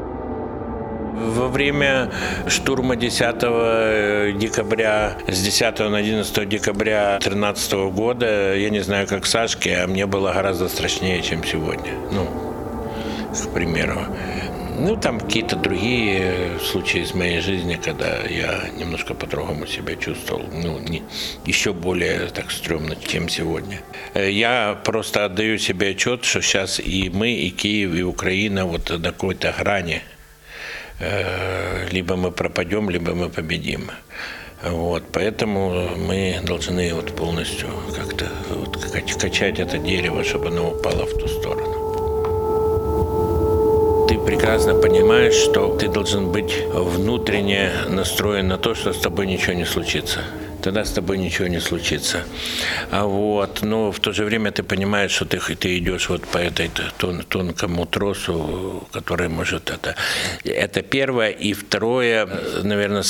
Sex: male